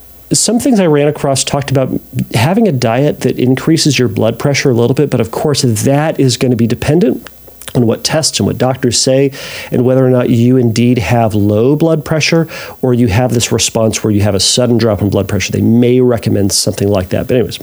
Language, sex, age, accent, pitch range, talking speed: English, male, 40-59, American, 115-140 Hz, 225 wpm